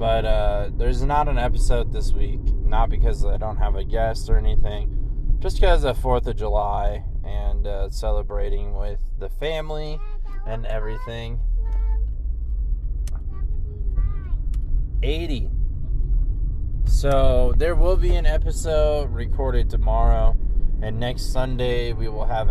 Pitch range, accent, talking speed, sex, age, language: 100-120 Hz, American, 125 wpm, male, 20-39, English